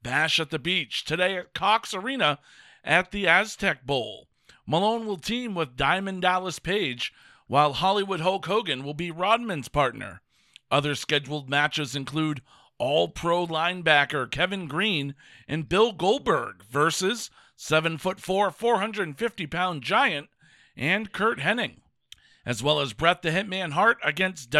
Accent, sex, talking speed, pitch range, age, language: American, male, 130 wpm, 140-190 Hz, 50-69, English